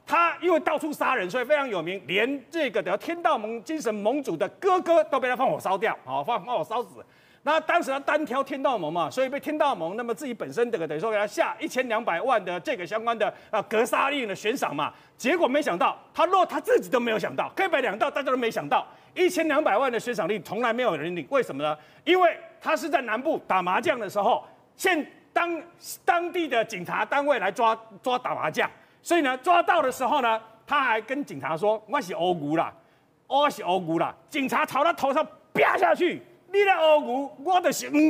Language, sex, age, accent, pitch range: Chinese, male, 40-59, native, 225-320 Hz